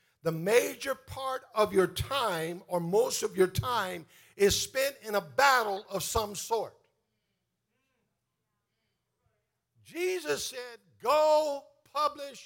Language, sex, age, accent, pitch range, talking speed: English, male, 50-69, American, 175-225 Hz, 110 wpm